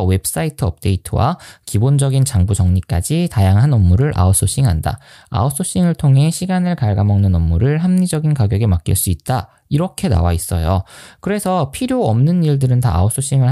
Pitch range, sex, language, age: 95-145 Hz, male, Korean, 20-39